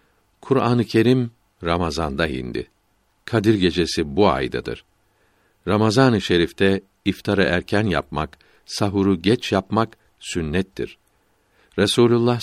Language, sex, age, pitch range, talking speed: Turkish, male, 60-79, 90-110 Hz, 85 wpm